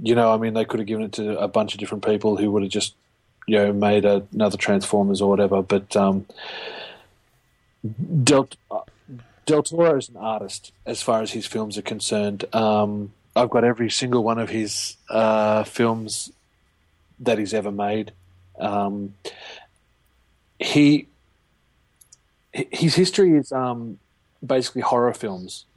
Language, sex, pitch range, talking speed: English, male, 105-120 Hz, 150 wpm